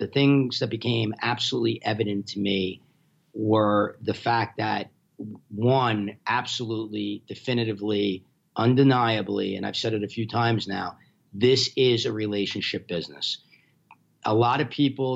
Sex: male